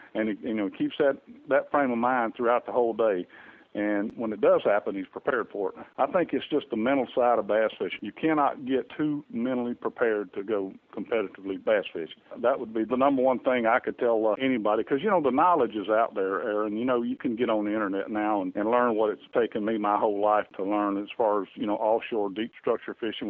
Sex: male